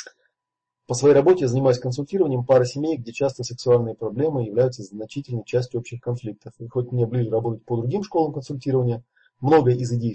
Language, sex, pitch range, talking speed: Russian, male, 110-130 Hz, 170 wpm